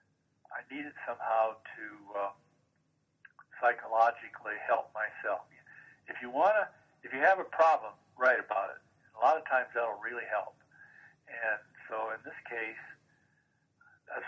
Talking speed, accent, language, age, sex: 145 wpm, American, English, 60-79, male